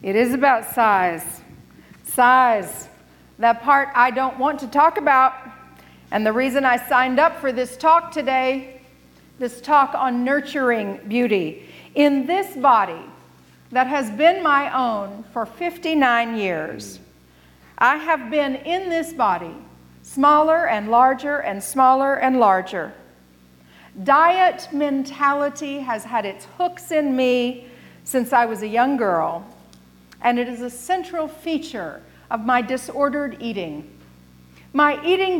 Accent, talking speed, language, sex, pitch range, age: American, 130 wpm, English, female, 210-295 Hz, 50-69